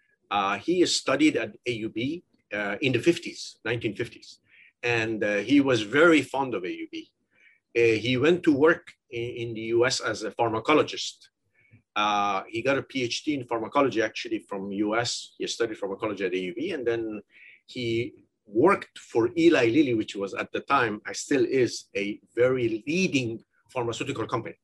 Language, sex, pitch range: Arabic, male, 110-155 Hz